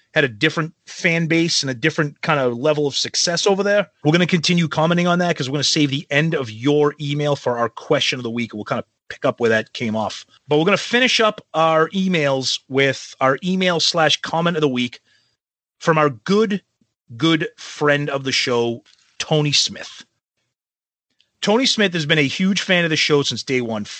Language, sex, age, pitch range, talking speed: English, male, 30-49, 125-160 Hz, 215 wpm